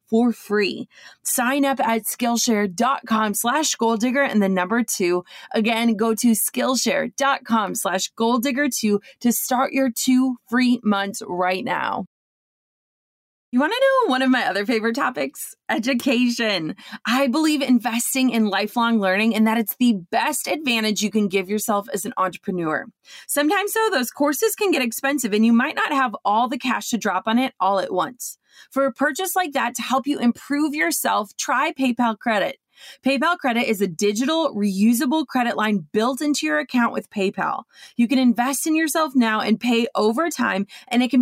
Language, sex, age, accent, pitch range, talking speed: English, female, 30-49, American, 215-270 Hz, 175 wpm